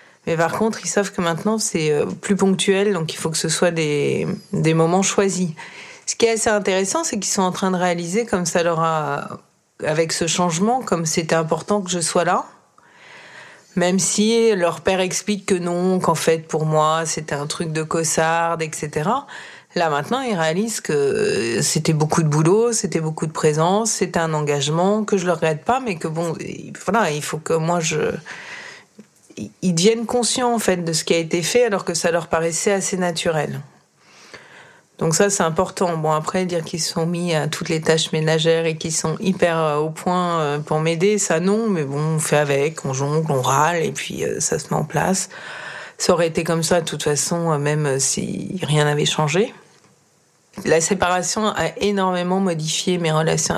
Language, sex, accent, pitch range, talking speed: French, female, French, 160-200 Hz, 195 wpm